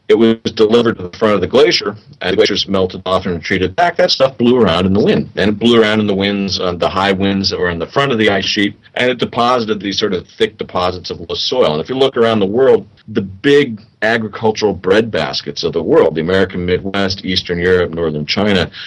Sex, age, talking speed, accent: male, 40-59, 245 wpm, American